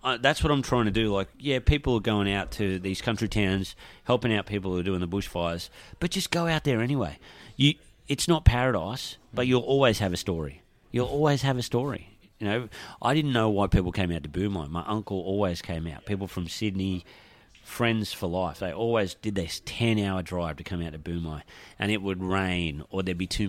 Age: 30-49